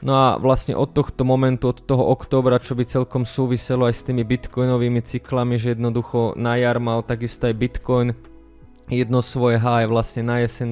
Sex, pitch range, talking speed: male, 120-130 Hz, 180 wpm